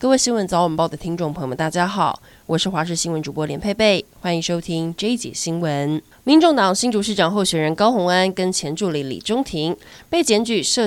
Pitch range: 170-220 Hz